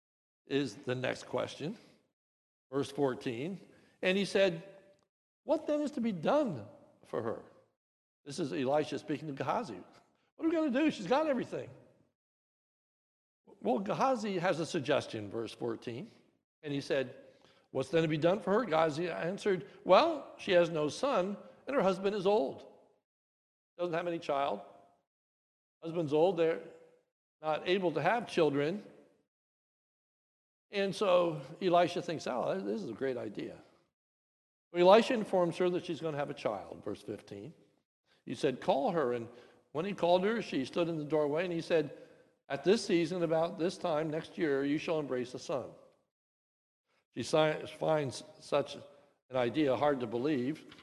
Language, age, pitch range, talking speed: English, 60-79, 140-190 Hz, 155 wpm